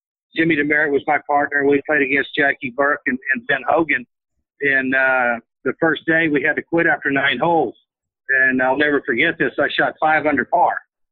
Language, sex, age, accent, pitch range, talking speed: English, male, 50-69, American, 135-160 Hz, 195 wpm